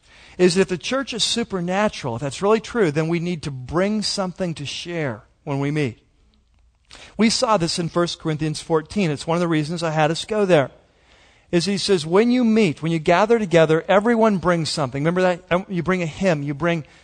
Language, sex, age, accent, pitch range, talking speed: English, male, 40-59, American, 150-190 Hz, 210 wpm